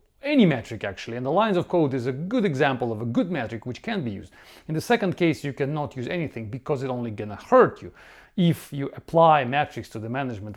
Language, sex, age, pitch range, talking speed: English, male, 40-59, 130-175 Hz, 235 wpm